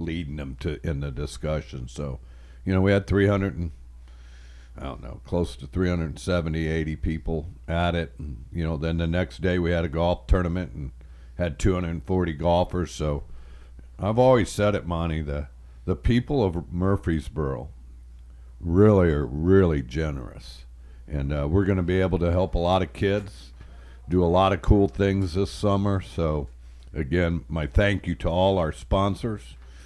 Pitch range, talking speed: 65-90 Hz, 170 wpm